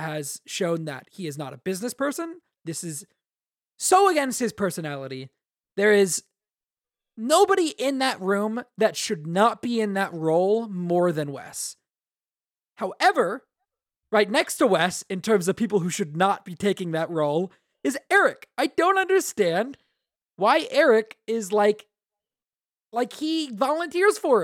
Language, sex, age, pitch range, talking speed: English, male, 20-39, 160-245 Hz, 145 wpm